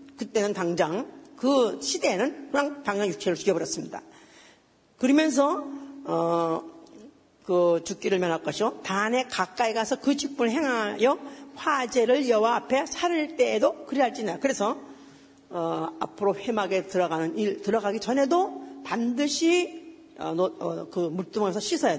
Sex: female